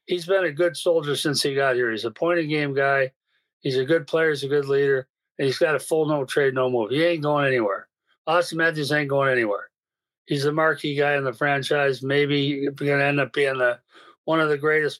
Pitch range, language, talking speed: 140-165 Hz, English, 230 wpm